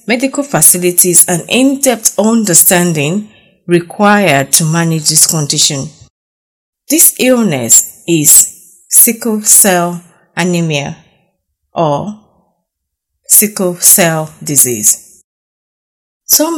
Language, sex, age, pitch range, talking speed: English, female, 30-49, 165-215 Hz, 75 wpm